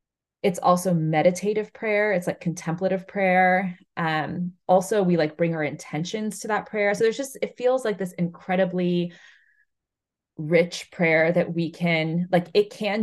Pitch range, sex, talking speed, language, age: 160-195 Hz, female, 155 wpm, English, 20-39